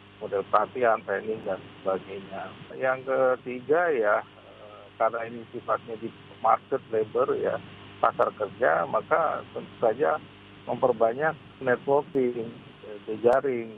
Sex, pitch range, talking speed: male, 105-130 Hz, 105 wpm